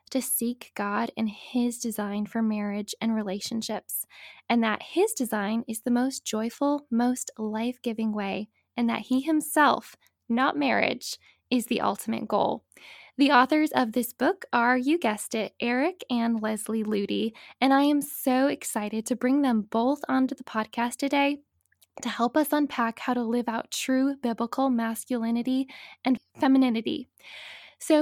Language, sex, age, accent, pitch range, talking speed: English, female, 10-29, American, 225-275 Hz, 150 wpm